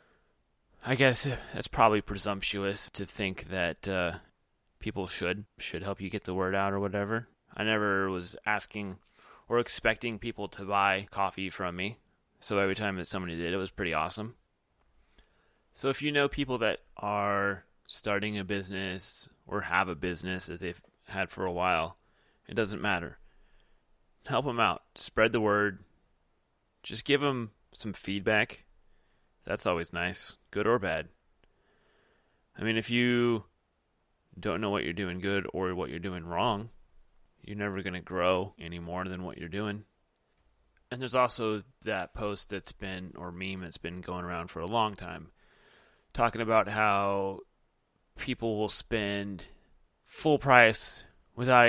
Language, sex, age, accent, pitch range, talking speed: English, male, 30-49, American, 90-110 Hz, 155 wpm